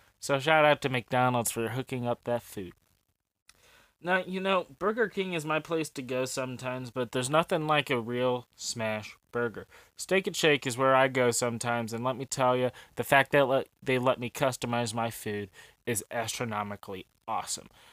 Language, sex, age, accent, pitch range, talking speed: English, male, 20-39, American, 120-140 Hz, 185 wpm